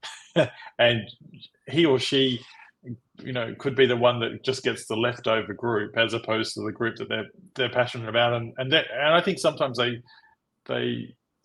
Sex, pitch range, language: male, 115-130 Hz, English